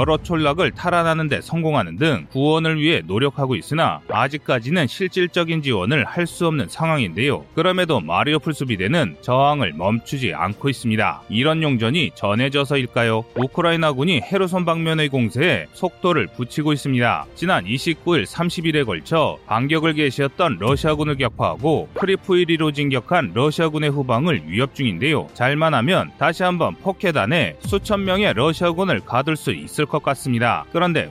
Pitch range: 125-165 Hz